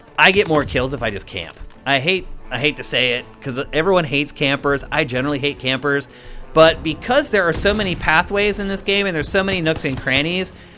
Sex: male